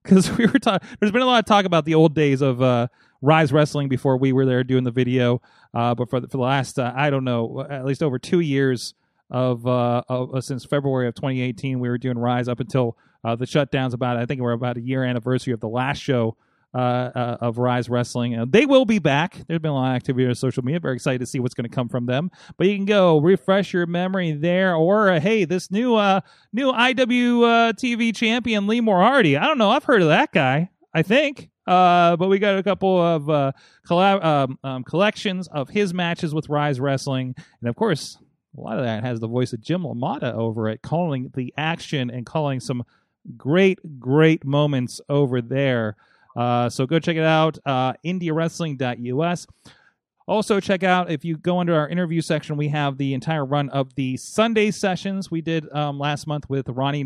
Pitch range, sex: 125-180 Hz, male